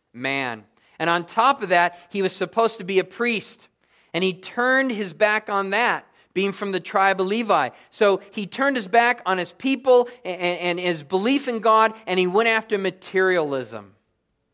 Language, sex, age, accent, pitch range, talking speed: English, male, 40-59, American, 155-215 Hz, 180 wpm